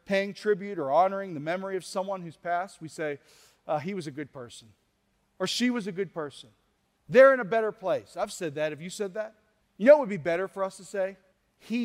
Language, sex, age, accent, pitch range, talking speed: English, male, 40-59, American, 180-230 Hz, 240 wpm